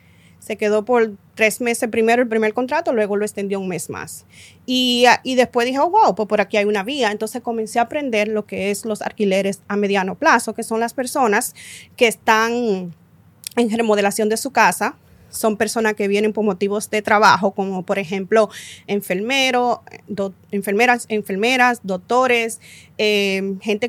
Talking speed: 170 wpm